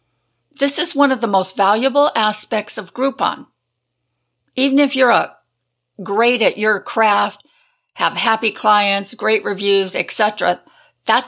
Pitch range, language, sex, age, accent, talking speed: 200-265 Hz, English, female, 50-69, American, 135 wpm